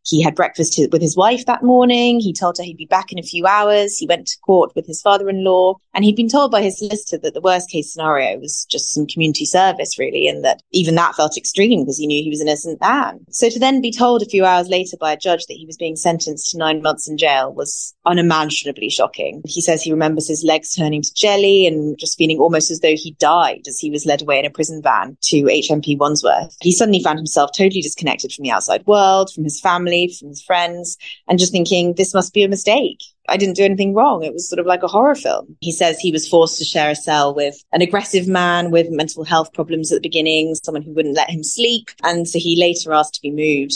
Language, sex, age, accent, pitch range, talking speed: English, female, 20-39, British, 155-185 Hz, 250 wpm